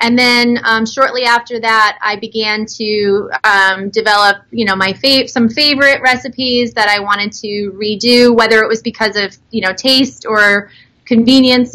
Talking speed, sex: 170 wpm, female